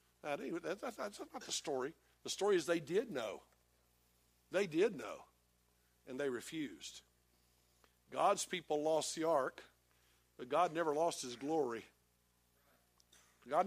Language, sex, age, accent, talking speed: English, male, 50-69, American, 125 wpm